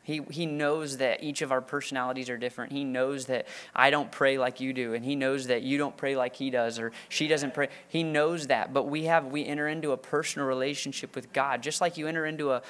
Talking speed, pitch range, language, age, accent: 250 wpm, 130-150 Hz, English, 20-39, American